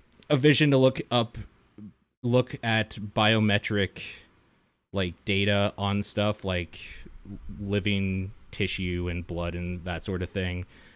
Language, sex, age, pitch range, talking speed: English, male, 20-39, 95-120 Hz, 120 wpm